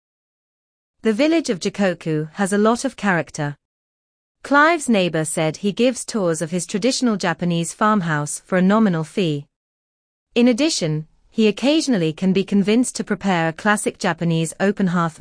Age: 30-49